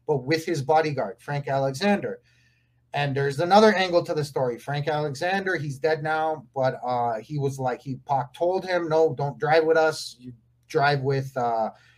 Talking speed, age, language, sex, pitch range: 175 wpm, 30-49, English, male, 130-165 Hz